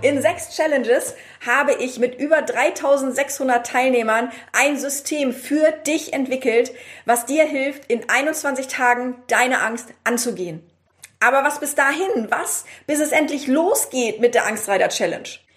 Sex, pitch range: female, 235-280 Hz